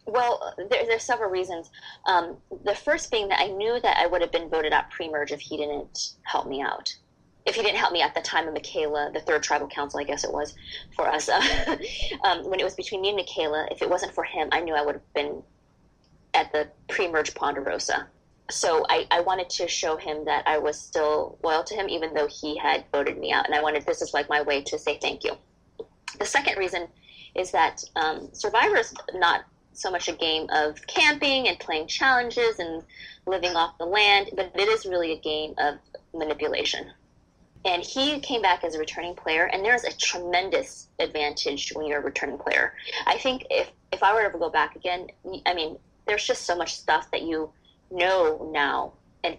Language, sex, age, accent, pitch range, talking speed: English, female, 20-39, American, 155-245 Hz, 210 wpm